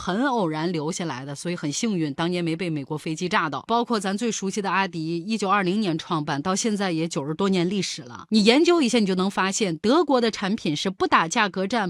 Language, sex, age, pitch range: Chinese, female, 30-49, 180-265 Hz